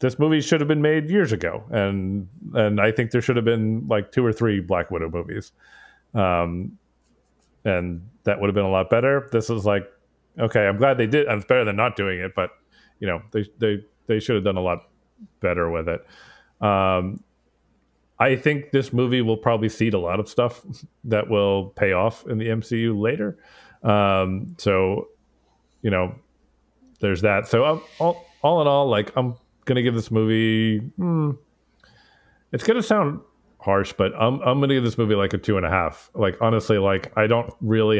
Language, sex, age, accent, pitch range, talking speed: English, male, 40-59, American, 100-125 Hz, 195 wpm